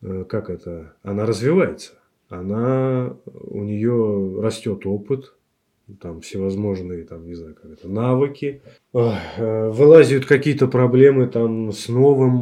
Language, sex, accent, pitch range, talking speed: Russian, male, native, 100-130 Hz, 110 wpm